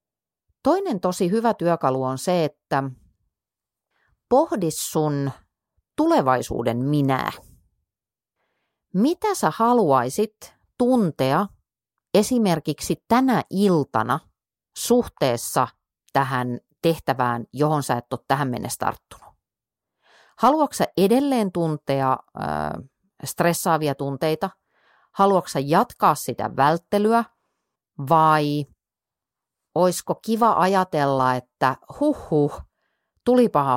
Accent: native